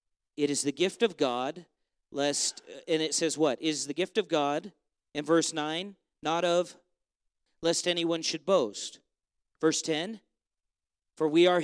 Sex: male